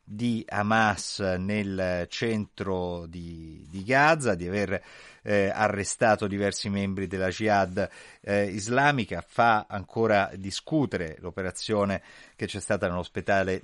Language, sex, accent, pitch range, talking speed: Italian, male, native, 90-105 Hz, 110 wpm